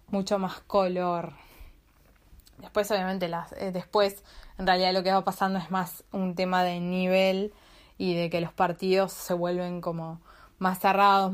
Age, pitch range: 20-39, 165-200 Hz